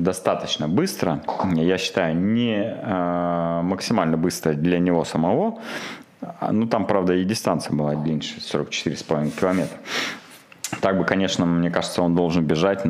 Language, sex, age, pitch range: Russian, male, 20-39, 85-100 Hz